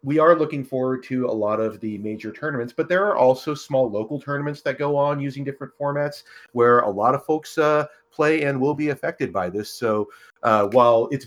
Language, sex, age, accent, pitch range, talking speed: English, male, 40-59, American, 105-140 Hz, 220 wpm